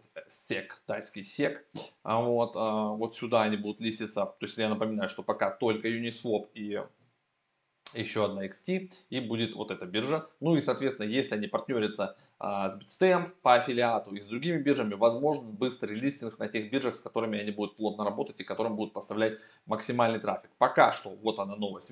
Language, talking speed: Russian, 175 wpm